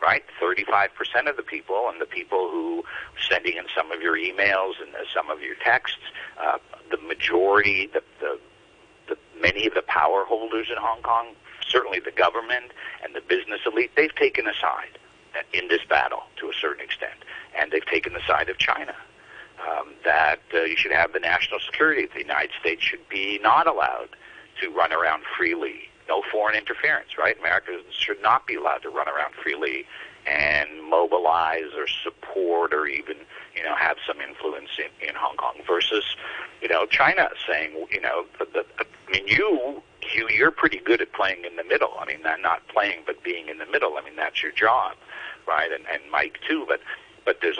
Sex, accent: male, American